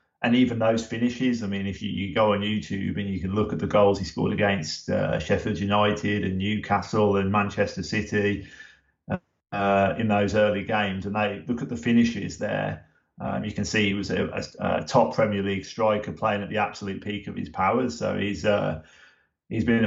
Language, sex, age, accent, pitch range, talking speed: English, male, 30-49, British, 100-110 Hz, 205 wpm